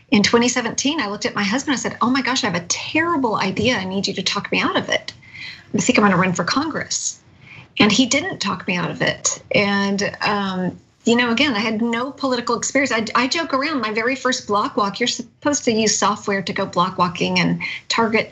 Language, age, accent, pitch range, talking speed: English, 40-59, American, 205-255 Hz, 230 wpm